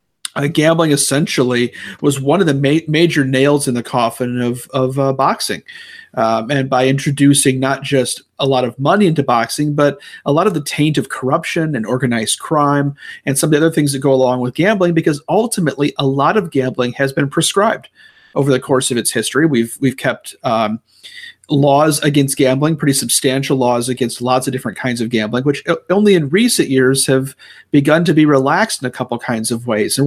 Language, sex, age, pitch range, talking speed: English, male, 40-59, 130-150 Hz, 200 wpm